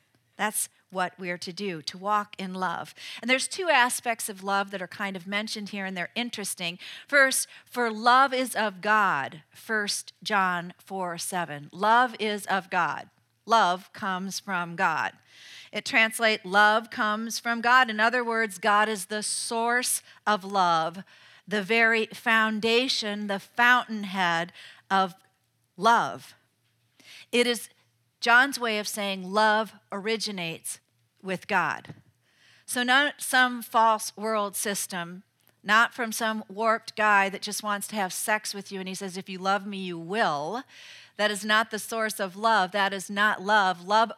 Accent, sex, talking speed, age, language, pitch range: American, female, 155 wpm, 50-69, English, 190-225 Hz